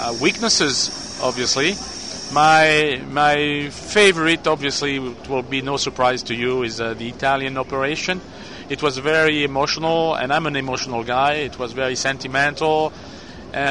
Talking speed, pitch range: 140 wpm, 125-145 Hz